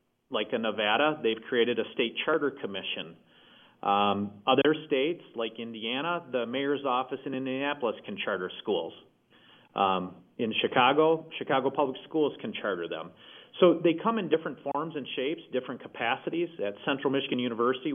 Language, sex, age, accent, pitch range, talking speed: English, male, 40-59, American, 115-145 Hz, 150 wpm